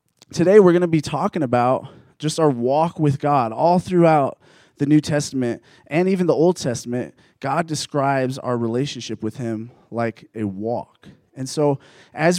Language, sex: English, male